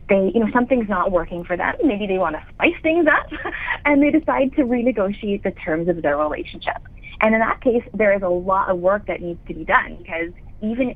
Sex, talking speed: female, 230 wpm